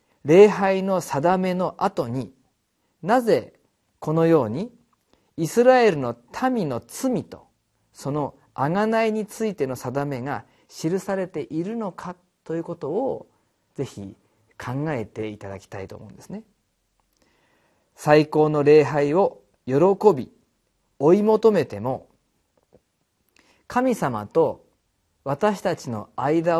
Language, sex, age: Japanese, male, 40-59